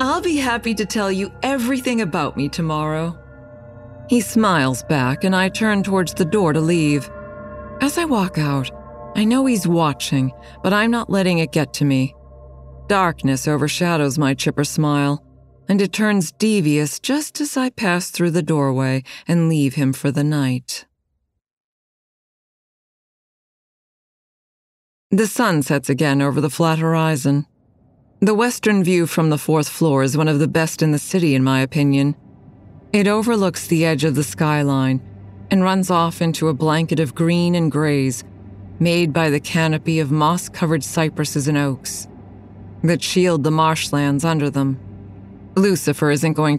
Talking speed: 155 wpm